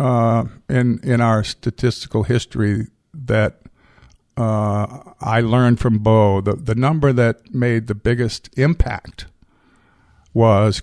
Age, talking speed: 50-69, 115 wpm